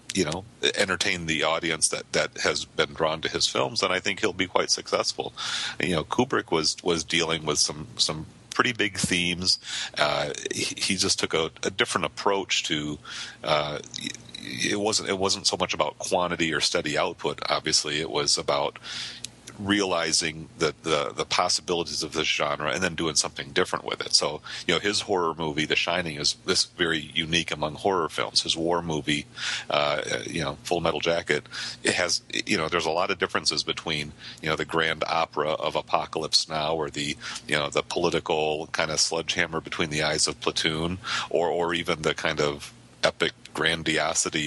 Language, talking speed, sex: English, 185 wpm, male